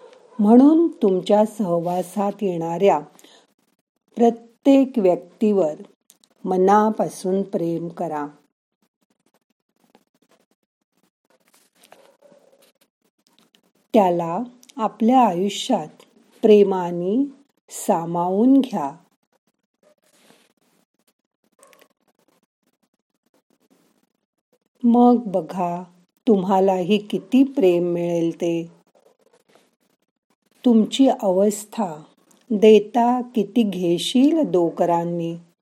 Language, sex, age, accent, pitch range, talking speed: Marathi, female, 50-69, native, 175-235 Hz, 35 wpm